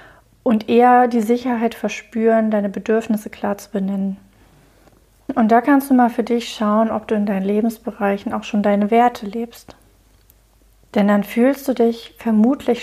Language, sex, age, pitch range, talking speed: German, female, 30-49, 205-235 Hz, 160 wpm